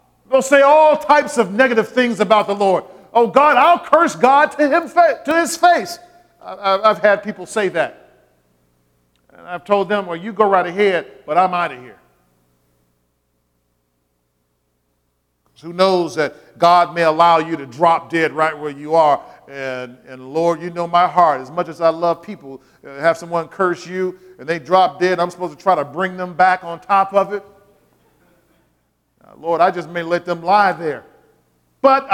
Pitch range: 165-220 Hz